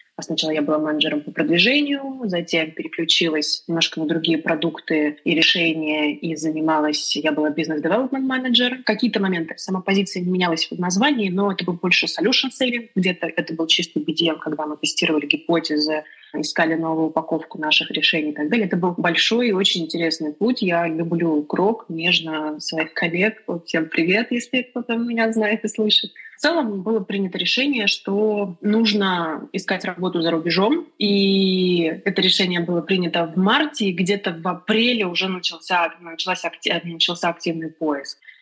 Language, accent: Russian, native